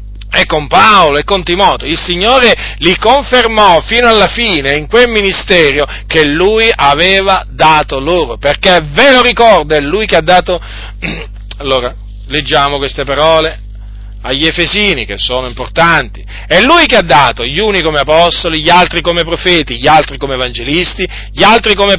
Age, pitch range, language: 40-59, 145-200 Hz, Italian